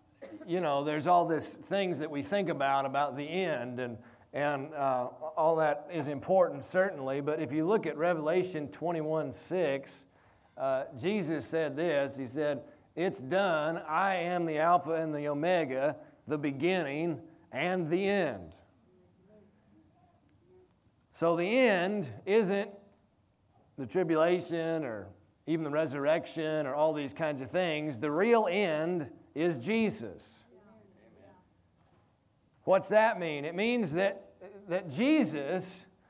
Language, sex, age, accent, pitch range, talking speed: English, male, 40-59, American, 140-185 Hz, 130 wpm